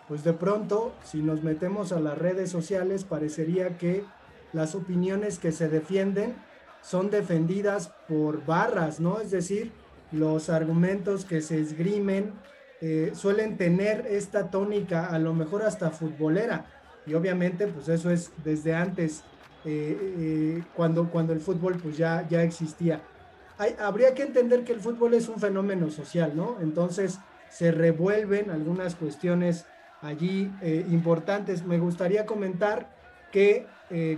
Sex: male